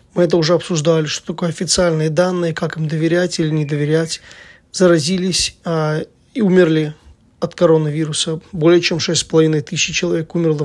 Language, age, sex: Russian, 20-39, male